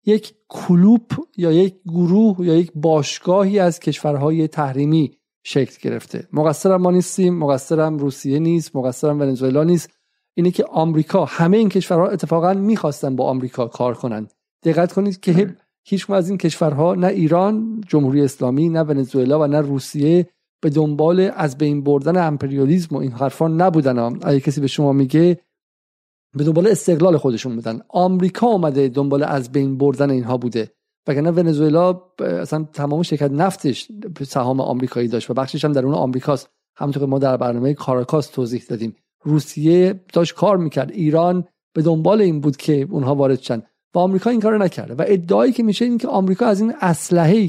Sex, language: male, Persian